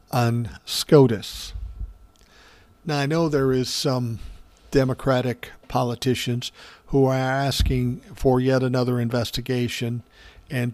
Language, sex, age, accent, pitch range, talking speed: English, male, 50-69, American, 120-155 Hz, 90 wpm